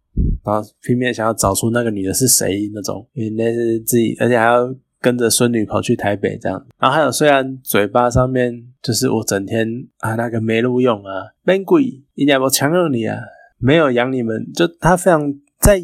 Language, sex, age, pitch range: Chinese, male, 20-39, 105-130 Hz